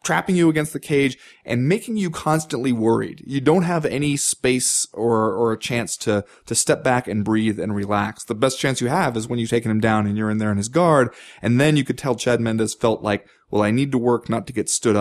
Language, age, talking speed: English, 20-39, 250 wpm